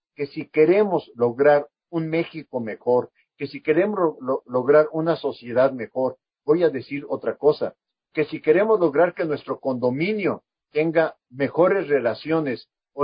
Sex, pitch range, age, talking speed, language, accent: male, 130-170 Hz, 50-69, 140 wpm, Spanish, Mexican